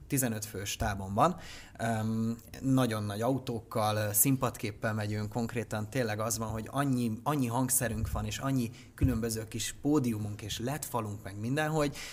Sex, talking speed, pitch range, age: male, 140 wpm, 105-130 Hz, 30-49